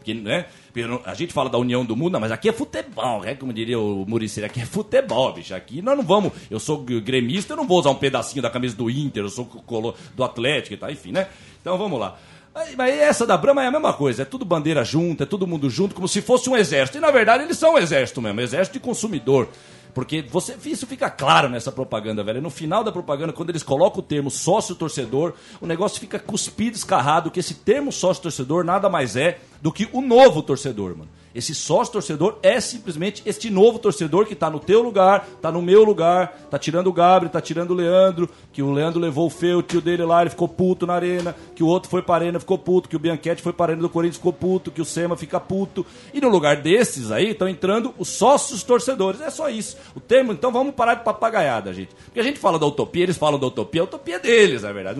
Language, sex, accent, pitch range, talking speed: Portuguese, male, Brazilian, 140-205 Hz, 240 wpm